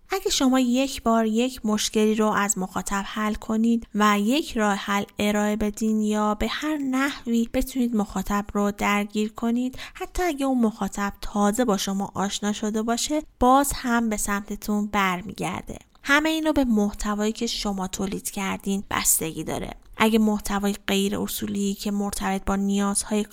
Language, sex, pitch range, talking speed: Persian, female, 205-245 Hz, 150 wpm